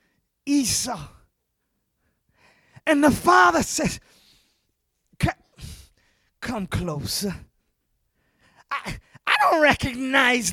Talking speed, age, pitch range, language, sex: 65 wpm, 30-49, 215-305 Hz, English, male